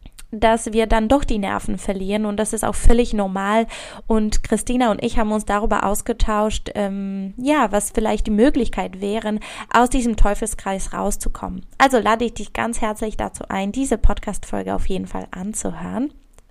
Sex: female